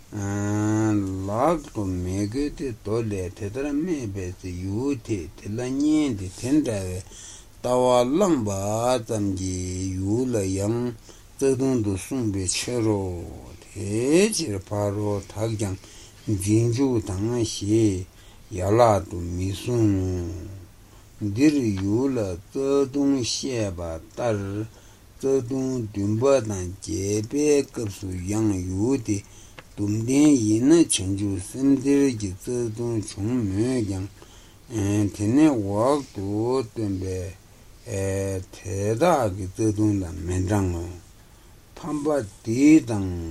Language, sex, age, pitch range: Italian, male, 60-79, 100-120 Hz